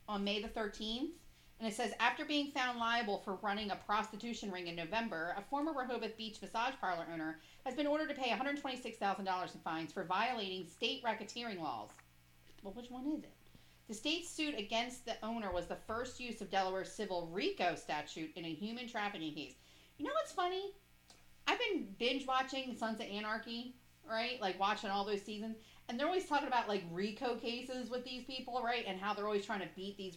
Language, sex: English, female